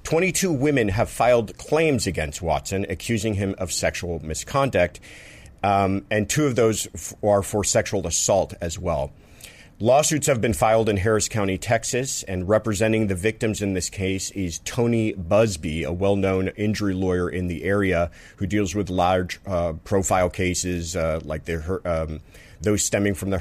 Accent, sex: American, male